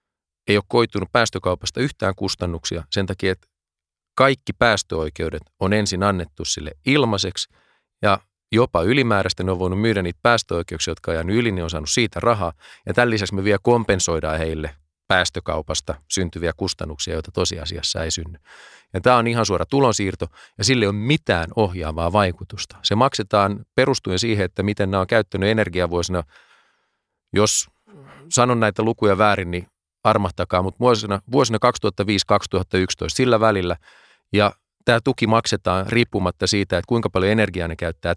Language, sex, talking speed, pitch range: Finnish, male, 150 wpm, 90-110 Hz